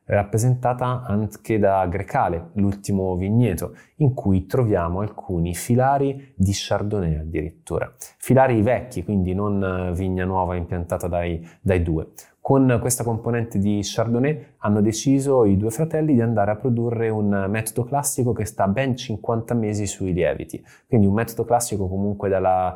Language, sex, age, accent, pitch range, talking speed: Italian, male, 20-39, native, 90-115 Hz, 140 wpm